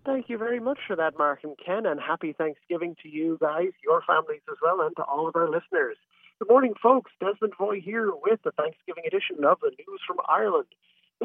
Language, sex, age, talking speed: English, male, 40-59, 220 wpm